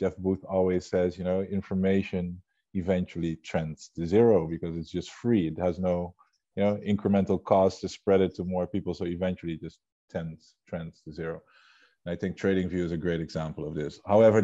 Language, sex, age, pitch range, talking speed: English, male, 20-39, 85-100 Hz, 190 wpm